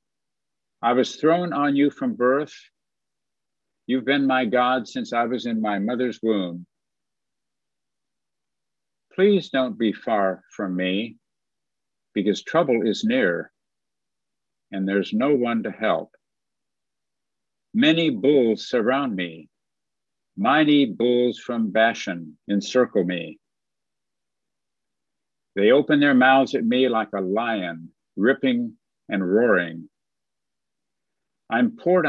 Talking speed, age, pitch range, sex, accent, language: 110 wpm, 60-79, 100-145 Hz, male, American, English